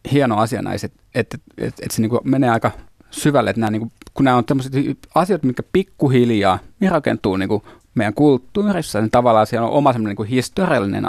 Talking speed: 140 wpm